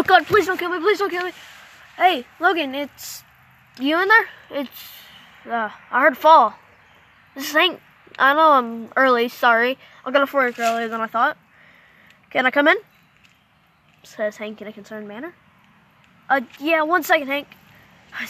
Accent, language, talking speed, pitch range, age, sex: American, English, 175 wpm, 225-315 Hz, 10-29, female